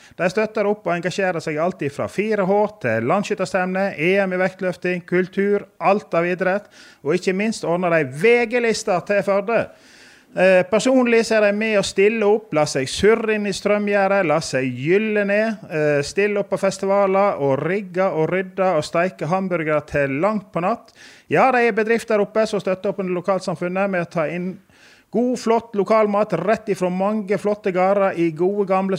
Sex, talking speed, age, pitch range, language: male, 170 wpm, 30-49, 175-210 Hz, English